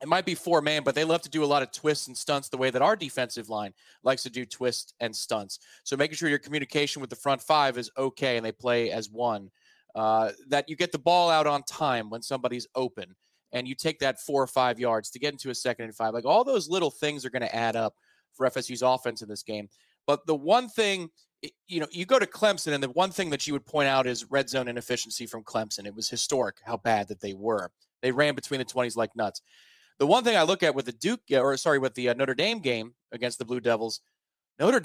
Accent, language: American, English